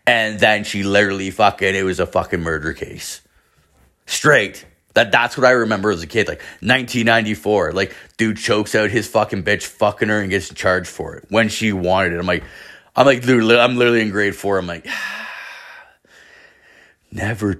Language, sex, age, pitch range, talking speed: English, male, 30-49, 90-115 Hz, 185 wpm